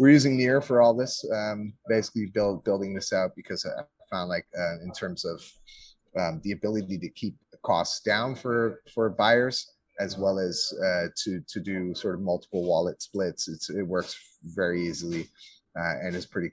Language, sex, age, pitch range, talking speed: English, male, 30-49, 95-125 Hz, 190 wpm